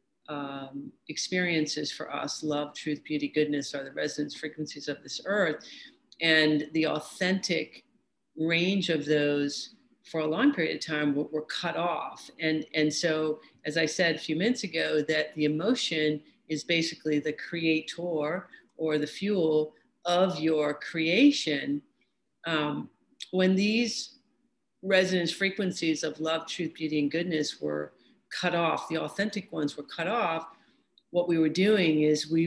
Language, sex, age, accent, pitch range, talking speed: English, female, 50-69, American, 150-175 Hz, 150 wpm